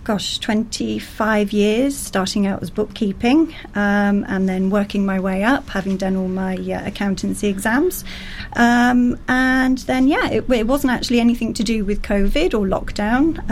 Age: 40-59